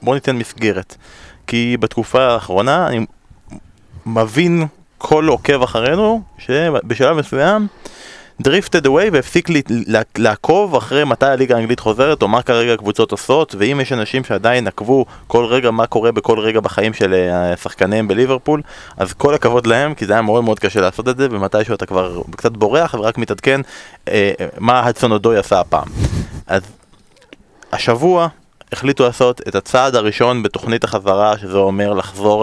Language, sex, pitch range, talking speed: Hebrew, male, 100-130 Hz, 145 wpm